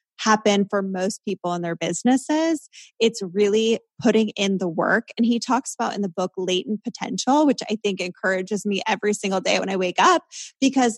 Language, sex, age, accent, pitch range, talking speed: English, female, 20-39, American, 195-250 Hz, 190 wpm